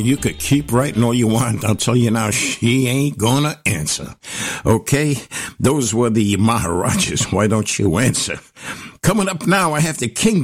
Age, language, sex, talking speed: 60-79, English, male, 180 wpm